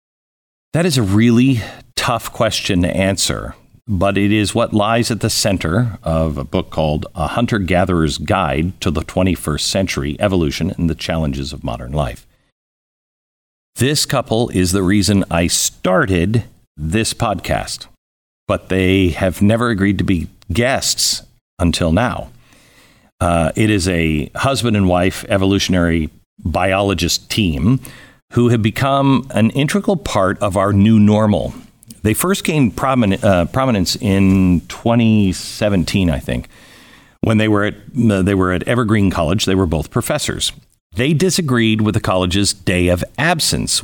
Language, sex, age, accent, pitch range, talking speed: English, male, 50-69, American, 90-115 Hz, 140 wpm